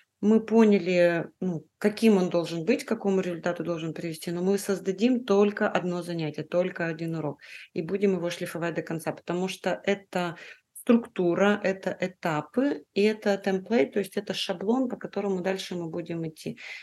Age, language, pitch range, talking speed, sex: 30-49, Russian, 170-205 Hz, 160 wpm, female